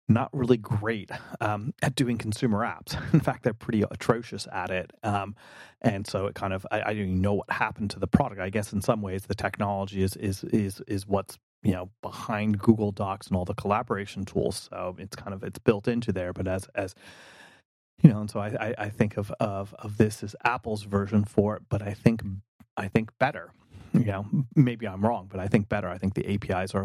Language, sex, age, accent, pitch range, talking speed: English, male, 30-49, American, 100-120 Hz, 225 wpm